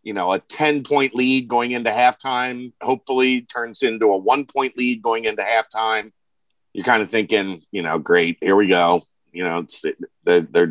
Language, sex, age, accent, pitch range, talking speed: English, male, 40-59, American, 110-145 Hz, 170 wpm